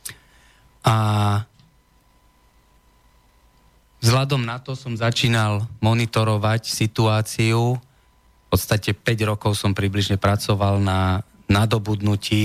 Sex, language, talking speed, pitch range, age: male, Slovak, 80 wpm, 100-110 Hz, 20-39